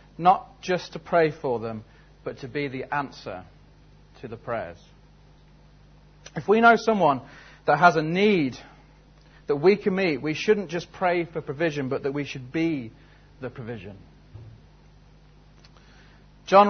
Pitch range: 140-185 Hz